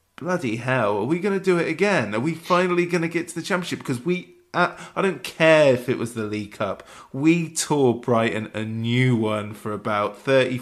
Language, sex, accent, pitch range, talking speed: English, male, British, 110-140 Hz, 225 wpm